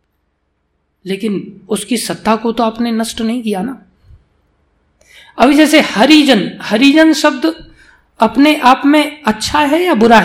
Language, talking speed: Hindi, 130 wpm